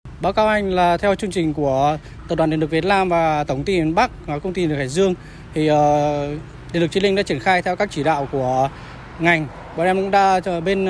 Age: 20-39